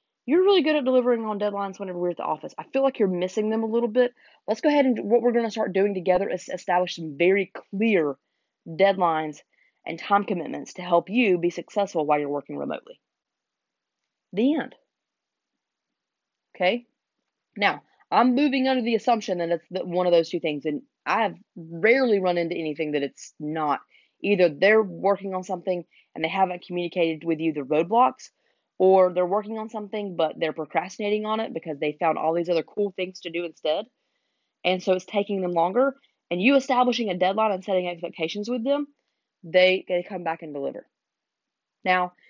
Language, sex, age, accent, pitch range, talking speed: English, female, 30-49, American, 170-215 Hz, 190 wpm